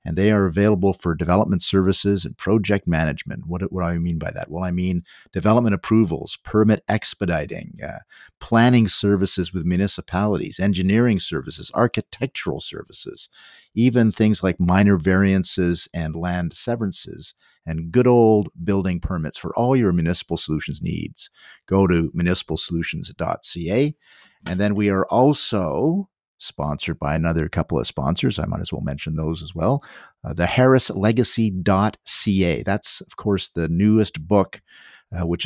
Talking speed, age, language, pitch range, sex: 145 wpm, 50-69, English, 85-105 Hz, male